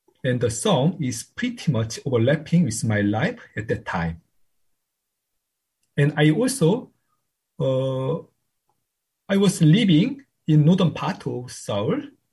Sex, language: male, Korean